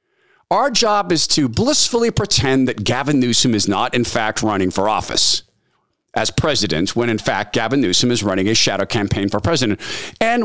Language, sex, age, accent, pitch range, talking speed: English, male, 50-69, American, 110-180 Hz, 180 wpm